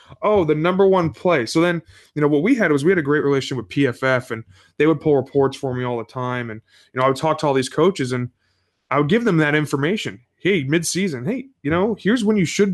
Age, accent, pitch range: 20-39, American, 120-160 Hz